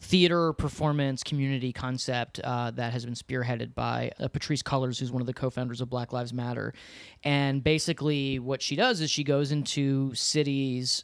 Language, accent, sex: English, American, male